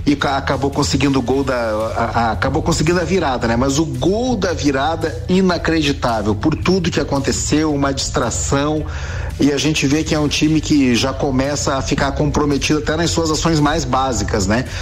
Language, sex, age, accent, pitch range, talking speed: Portuguese, male, 40-59, Brazilian, 125-165 Hz, 190 wpm